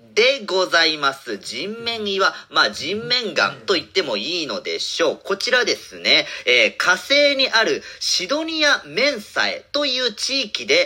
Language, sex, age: Japanese, male, 40-59